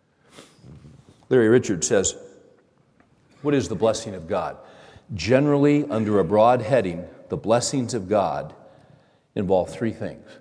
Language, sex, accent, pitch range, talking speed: English, male, American, 105-130 Hz, 120 wpm